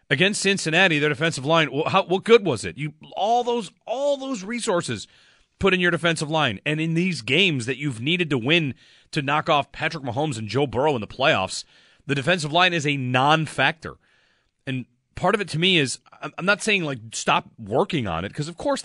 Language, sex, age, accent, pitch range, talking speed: English, male, 30-49, American, 125-170 Hz, 195 wpm